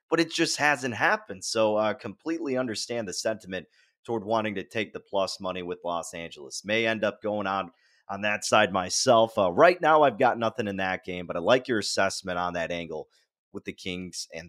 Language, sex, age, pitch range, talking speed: English, male, 30-49, 95-125 Hz, 210 wpm